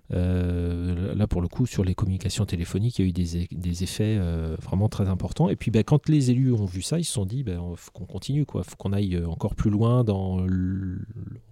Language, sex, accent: French, male, French